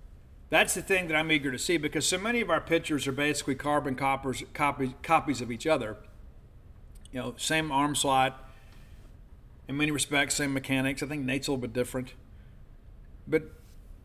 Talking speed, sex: 170 wpm, male